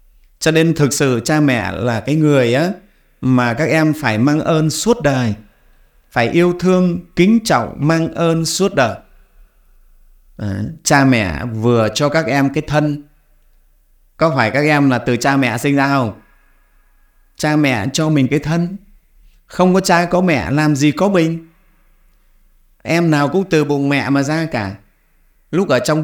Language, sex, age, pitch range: Vietnamese, male, 30-49, 115-160 Hz